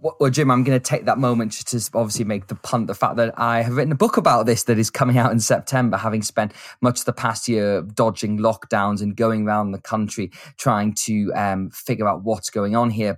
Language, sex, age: English, male, 20-39